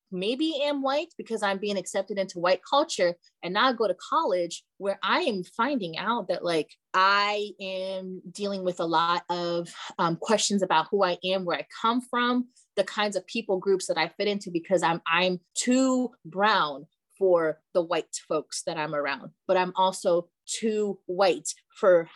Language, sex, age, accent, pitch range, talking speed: English, female, 20-39, American, 170-205 Hz, 180 wpm